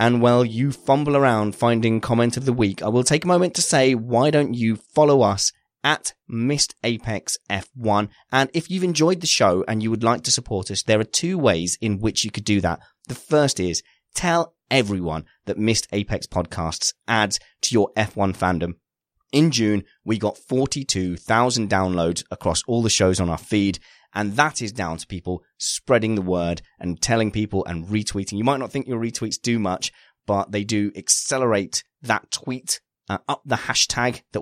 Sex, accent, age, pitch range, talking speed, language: male, British, 20-39, 95-120 Hz, 190 wpm, English